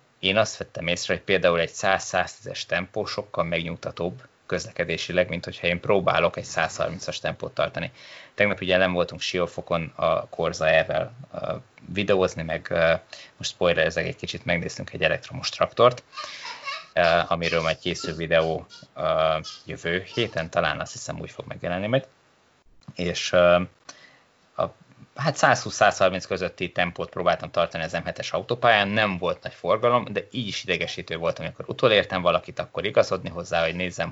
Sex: male